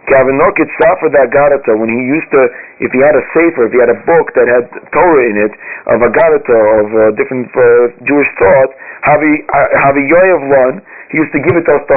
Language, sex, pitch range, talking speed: English, male, 135-185 Hz, 205 wpm